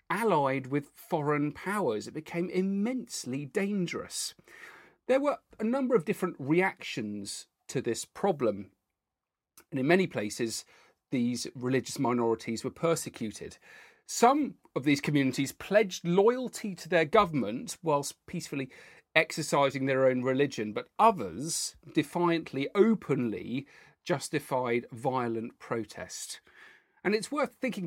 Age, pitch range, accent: 40-59, 130-185 Hz, British